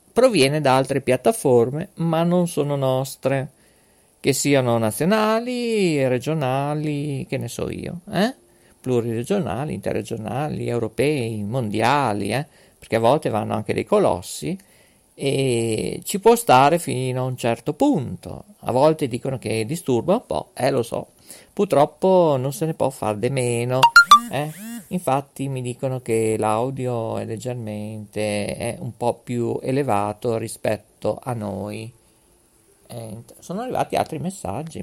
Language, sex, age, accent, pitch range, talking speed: Italian, male, 50-69, native, 115-180 Hz, 135 wpm